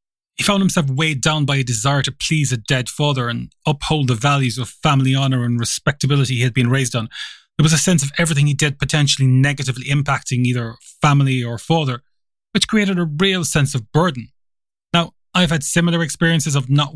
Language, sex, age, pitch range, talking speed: English, male, 20-39, 130-155 Hz, 200 wpm